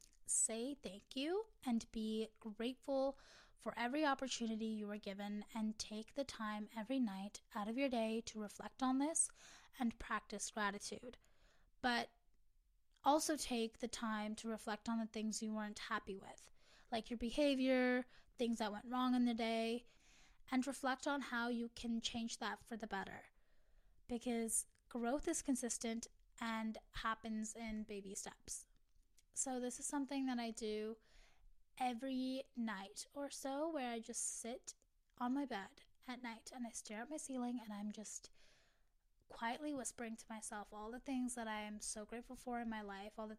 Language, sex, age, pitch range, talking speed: English, female, 10-29, 215-250 Hz, 165 wpm